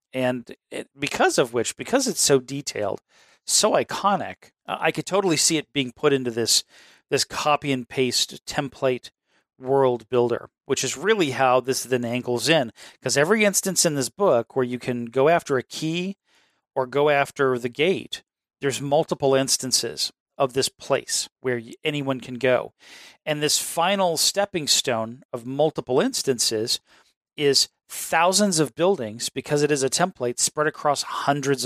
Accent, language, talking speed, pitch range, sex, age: American, English, 150 wpm, 125-150 Hz, male, 40-59